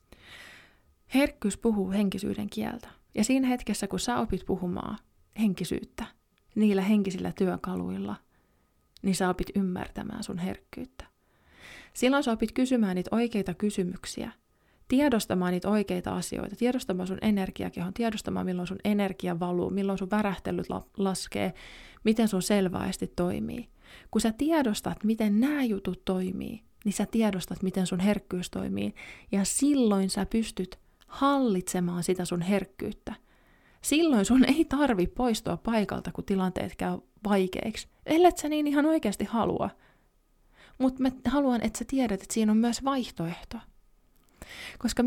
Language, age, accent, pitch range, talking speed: Finnish, 20-39, native, 185-240 Hz, 130 wpm